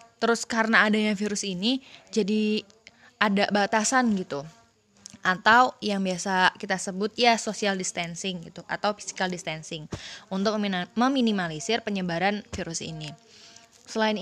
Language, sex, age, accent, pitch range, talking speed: Indonesian, female, 20-39, native, 180-220 Hz, 115 wpm